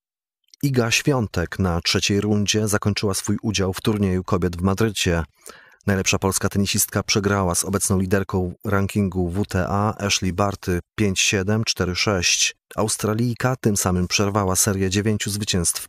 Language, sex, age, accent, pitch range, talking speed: Polish, male, 30-49, native, 95-110 Hz, 120 wpm